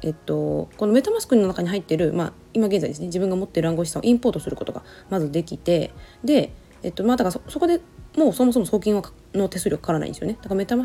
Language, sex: Japanese, female